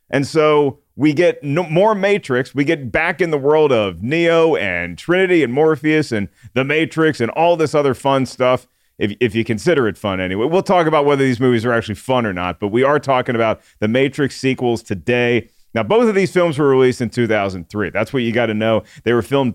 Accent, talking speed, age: American, 225 wpm, 40-59